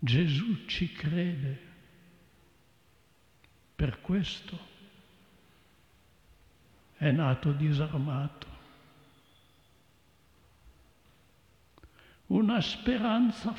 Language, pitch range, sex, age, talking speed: Italian, 140-215 Hz, male, 60-79, 45 wpm